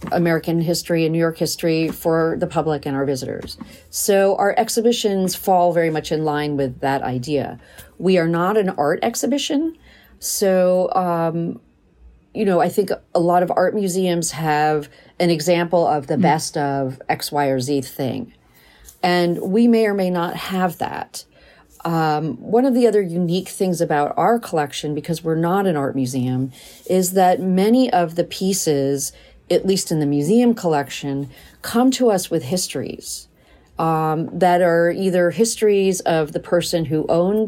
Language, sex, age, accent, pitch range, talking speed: English, female, 40-59, American, 155-195 Hz, 165 wpm